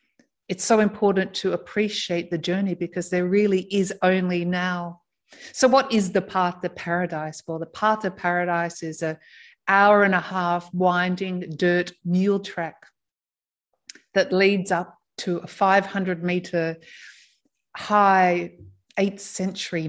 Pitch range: 170-195 Hz